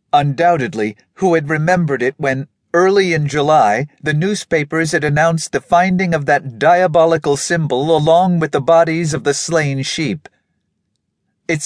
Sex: male